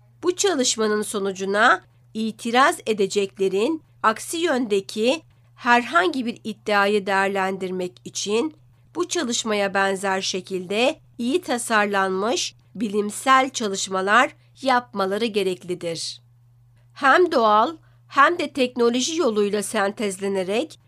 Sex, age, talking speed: female, 50-69, 85 wpm